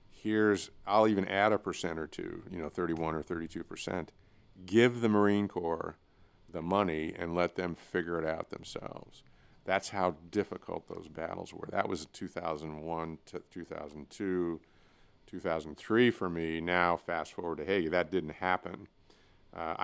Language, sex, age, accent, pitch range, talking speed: English, male, 50-69, American, 80-100 Hz, 150 wpm